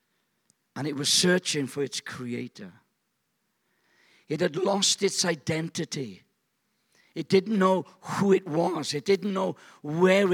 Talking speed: 130 wpm